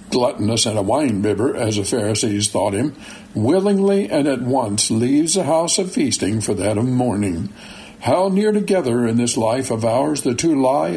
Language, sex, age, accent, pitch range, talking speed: English, male, 60-79, American, 110-150 Hz, 180 wpm